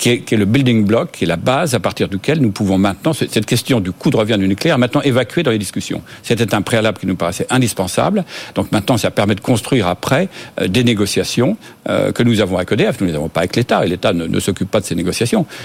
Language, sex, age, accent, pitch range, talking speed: French, male, 50-69, French, 100-125 Hz, 265 wpm